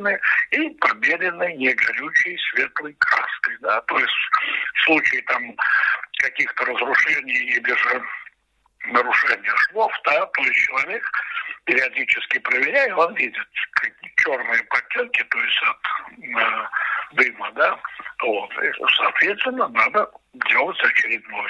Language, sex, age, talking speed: Russian, male, 60-79, 110 wpm